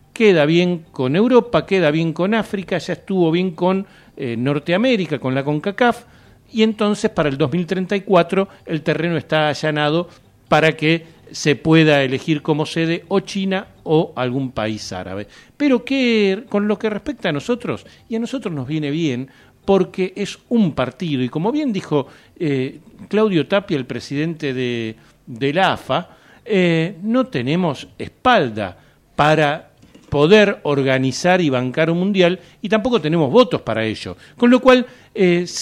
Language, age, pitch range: Spanish, 40-59, 145-195 Hz